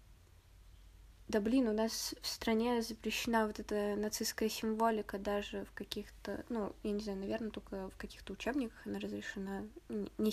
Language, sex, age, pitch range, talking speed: Russian, female, 20-39, 200-225 Hz, 150 wpm